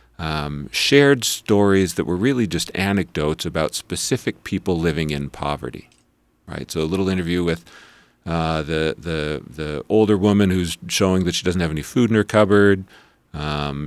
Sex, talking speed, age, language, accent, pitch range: male, 165 wpm, 40-59, English, American, 75-100 Hz